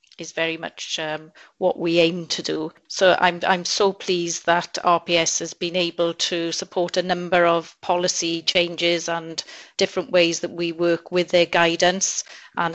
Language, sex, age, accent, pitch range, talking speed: English, female, 30-49, British, 170-185 Hz, 170 wpm